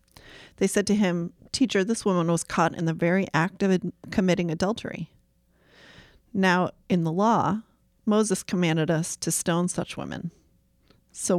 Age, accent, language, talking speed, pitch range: 40-59, American, English, 150 wpm, 170-205 Hz